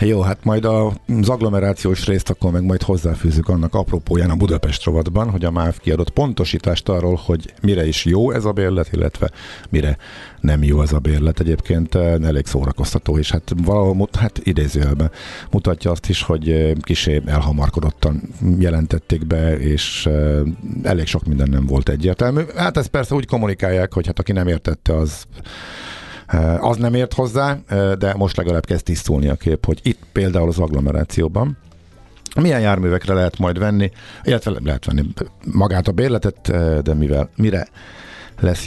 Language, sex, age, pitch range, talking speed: Hungarian, male, 50-69, 80-100 Hz, 155 wpm